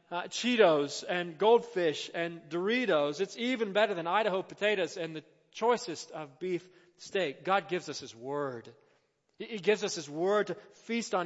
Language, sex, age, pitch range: English, male, 40-59, 140-190 Hz